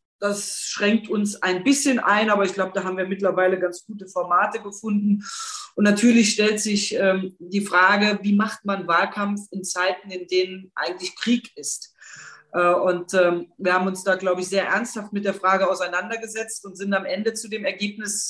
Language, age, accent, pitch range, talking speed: German, 30-49, German, 180-210 Hz, 185 wpm